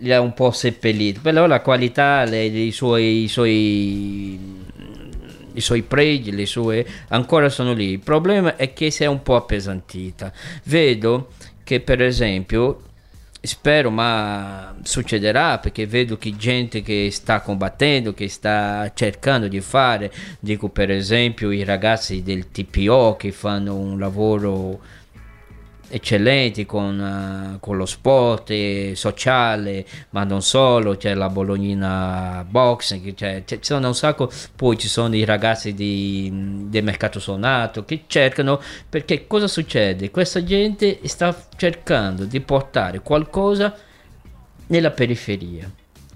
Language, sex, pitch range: Italian, male, 100-135 Hz